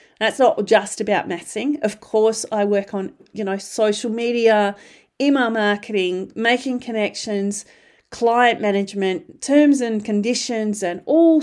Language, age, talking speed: English, 40-59, 130 wpm